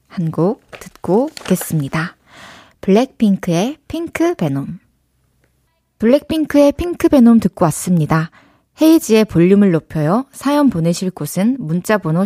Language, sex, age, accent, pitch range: Korean, female, 20-39, native, 165-230 Hz